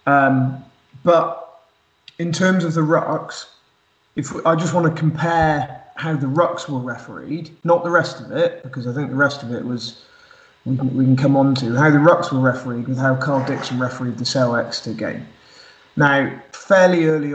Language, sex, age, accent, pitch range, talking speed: English, male, 20-39, British, 130-155 Hz, 185 wpm